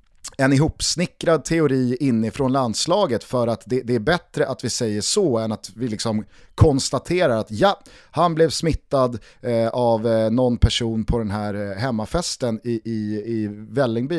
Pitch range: 115-145 Hz